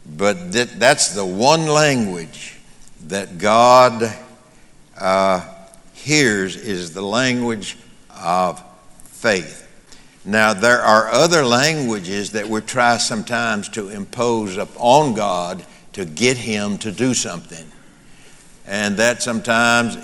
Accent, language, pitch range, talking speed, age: American, English, 110-130 Hz, 110 wpm, 60-79